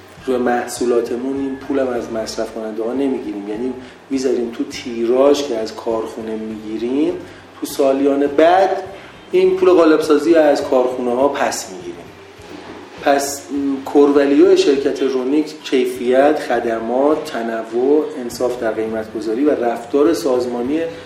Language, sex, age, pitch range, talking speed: Persian, male, 30-49, 120-145 Hz, 120 wpm